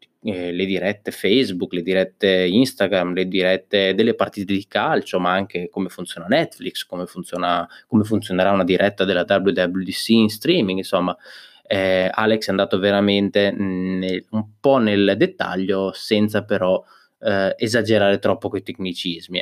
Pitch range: 95-120 Hz